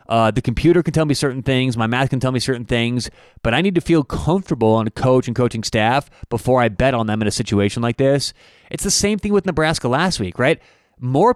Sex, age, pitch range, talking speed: male, 30-49, 120-150 Hz, 250 wpm